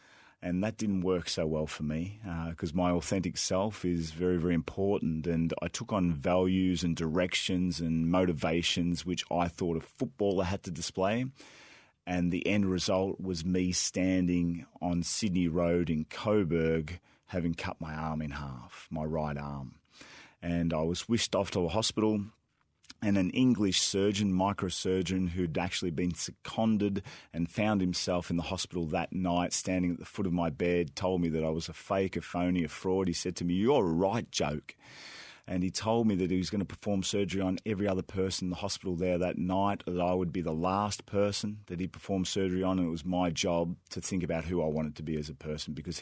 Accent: Australian